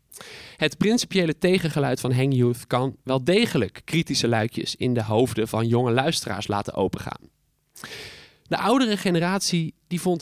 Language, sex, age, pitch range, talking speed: Dutch, male, 20-39, 130-180 Hz, 140 wpm